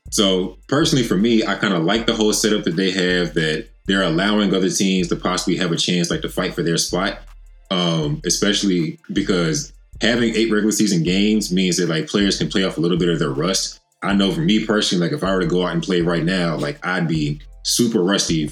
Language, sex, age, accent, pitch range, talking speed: English, male, 20-39, American, 90-110 Hz, 235 wpm